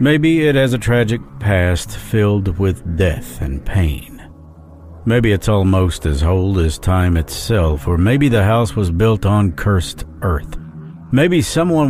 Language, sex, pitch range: English, male, 80-125 Hz